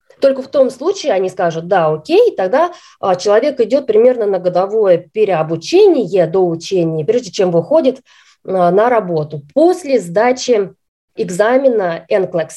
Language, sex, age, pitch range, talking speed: Russian, female, 20-39, 180-290 Hz, 125 wpm